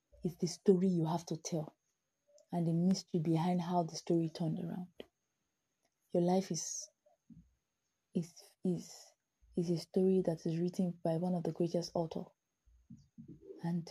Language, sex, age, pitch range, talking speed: English, female, 20-39, 175-285 Hz, 145 wpm